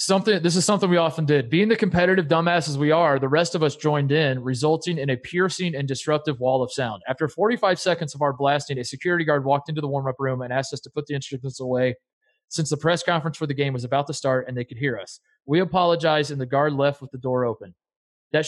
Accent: American